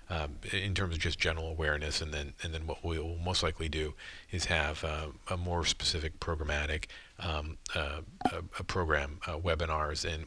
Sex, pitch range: male, 80-90 Hz